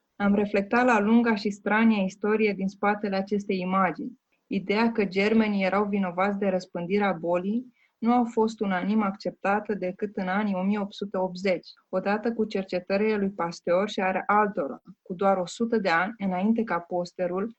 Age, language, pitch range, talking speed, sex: 20-39, Romanian, 185-215 Hz, 150 wpm, female